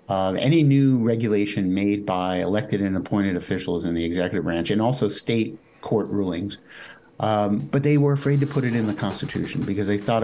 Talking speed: 195 wpm